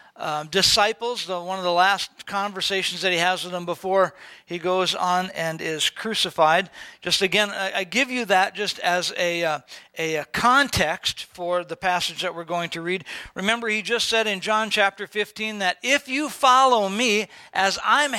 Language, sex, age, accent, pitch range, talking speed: English, male, 50-69, American, 175-230 Hz, 180 wpm